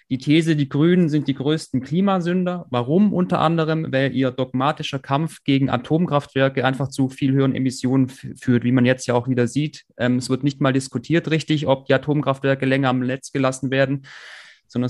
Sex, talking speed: male, 185 wpm